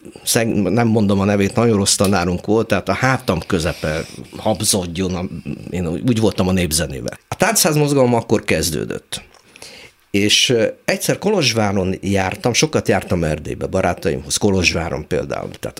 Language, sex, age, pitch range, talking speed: Hungarian, male, 50-69, 100-145 Hz, 125 wpm